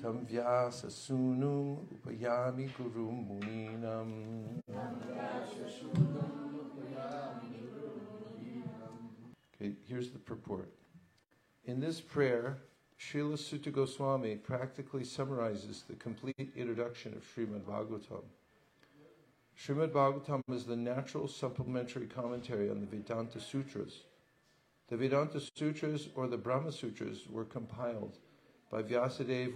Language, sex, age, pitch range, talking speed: English, male, 60-79, 115-140 Hz, 80 wpm